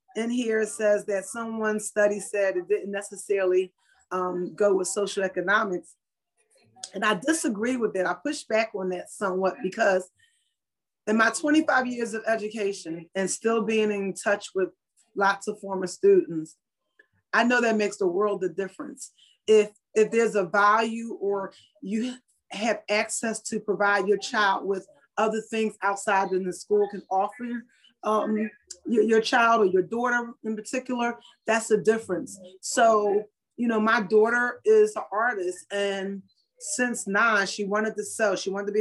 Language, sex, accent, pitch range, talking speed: English, female, American, 195-235 Hz, 160 wpm